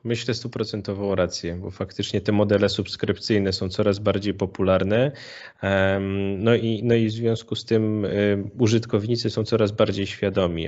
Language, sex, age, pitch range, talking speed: Polish, male, 10-29, 95-105 Hz, 140 wpm